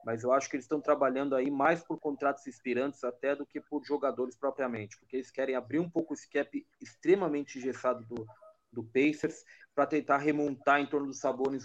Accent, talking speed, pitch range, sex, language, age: Brazilian, 195 wpm, 130-160 Hz, male, Portuguese, 30-49